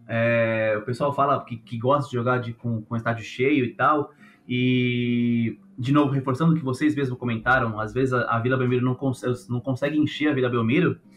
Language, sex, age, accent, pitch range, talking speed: Portuguese, male, 20-39, Brazilian, 120-140 Hz, 210 wpm